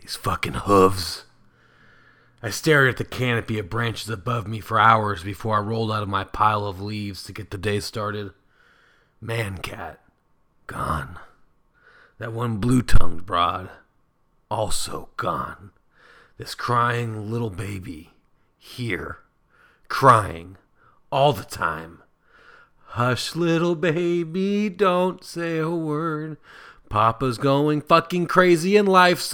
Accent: American